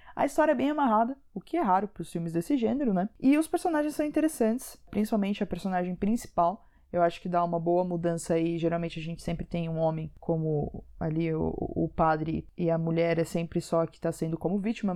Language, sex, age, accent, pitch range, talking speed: Portuguese, female, 20-39, Brazilian, 180-250 Hz, 220 wpm